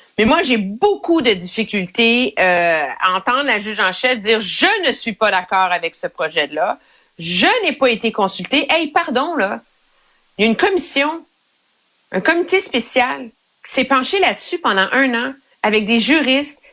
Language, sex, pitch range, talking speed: French, female, 225-320 Hz, 175 wpm